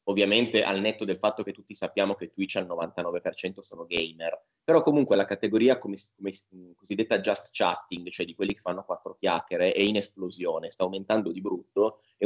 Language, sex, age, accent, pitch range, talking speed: Italian, male, 20-39, native, 95-115 Hz, 175 wpm